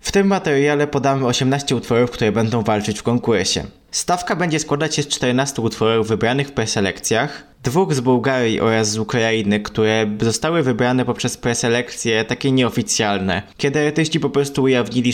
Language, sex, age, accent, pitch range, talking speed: Polish, male, 20-39, native, 110-140 Hz, 155 wpm